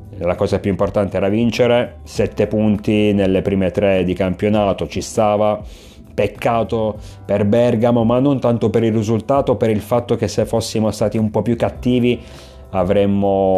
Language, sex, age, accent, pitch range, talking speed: Italian, male, 30-49, native, 100-120 Hz, 160 wpm